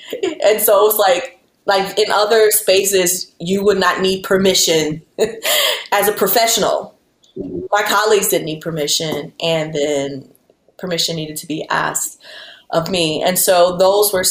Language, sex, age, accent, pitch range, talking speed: English, female, 20-39, American, 155-190 Hz, 145 wpm